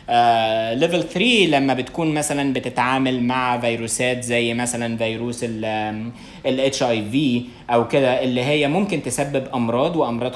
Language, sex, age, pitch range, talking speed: Arabic, male, 20-39, 115-140 Hz, 135 wpm